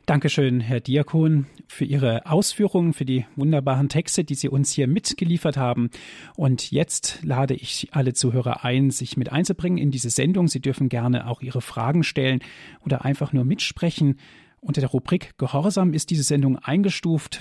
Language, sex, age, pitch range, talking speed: German, male, 40-59, 125-155 Hz, 170 wpm